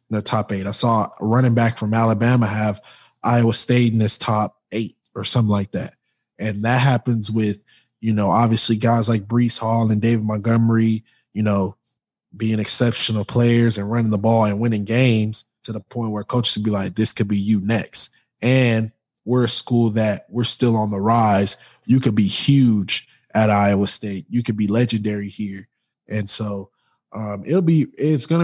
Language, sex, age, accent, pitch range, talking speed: English, male, 20-39, American, 105-120 Hz, 190 wpm